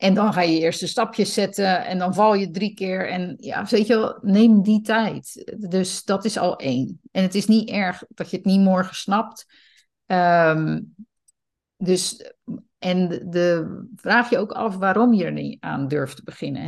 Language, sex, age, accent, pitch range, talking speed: Dutch, female, 50-69, Dutch, 160-205 Hz, 200 wpm